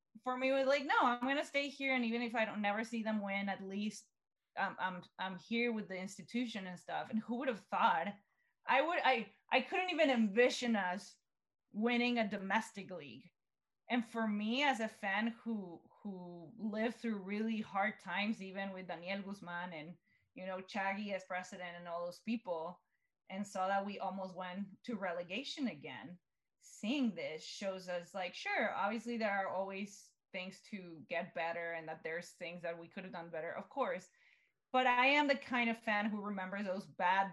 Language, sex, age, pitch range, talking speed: English, female, 20-39, 180-230 Hz, 195 wpm